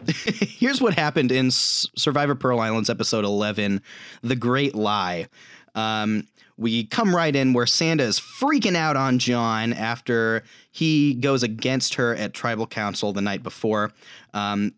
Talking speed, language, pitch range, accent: 140 wpm, English, 110-150 Hz, American